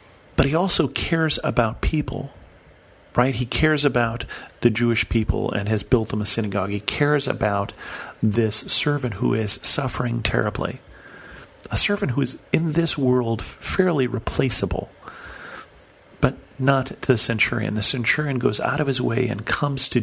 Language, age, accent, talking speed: English, 40-59, American, 155 wpm